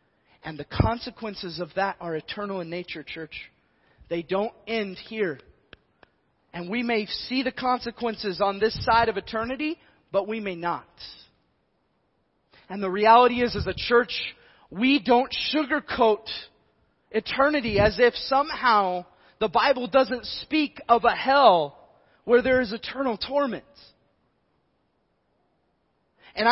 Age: 30-49